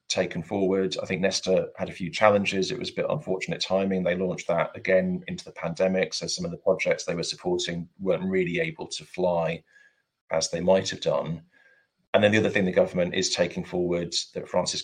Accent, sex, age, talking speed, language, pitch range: British, male, 30-49, 210 wpm, English, 85-120 Hz